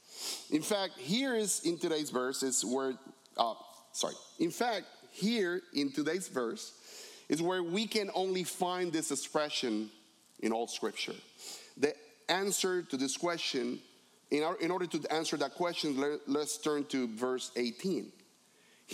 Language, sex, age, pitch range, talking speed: English, male, 40-59, 135-195 Hz, 150 wpm